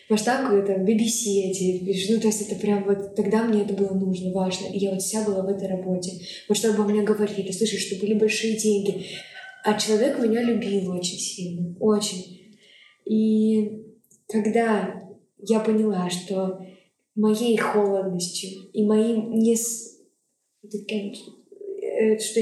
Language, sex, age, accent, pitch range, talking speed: Russian, female, 20-39, native, 200-230 Hz, 140 wpm